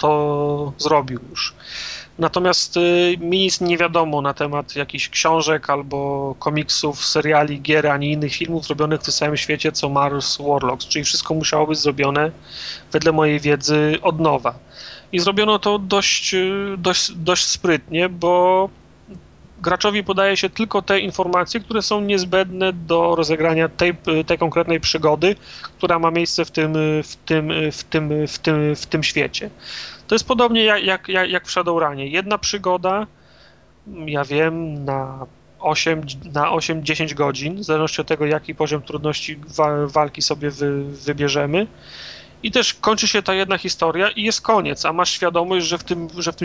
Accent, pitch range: native, 150-185 Hz